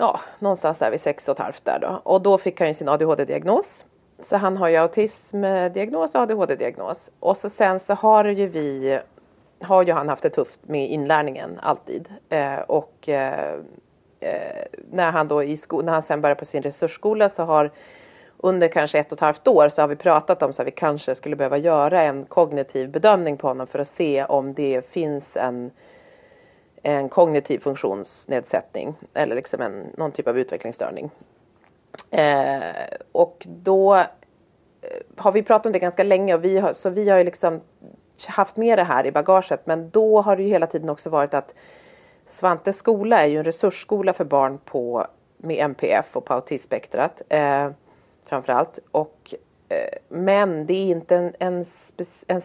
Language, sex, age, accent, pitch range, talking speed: Swedish, female, 40-59, native, 150-200 Hz, 175 wpm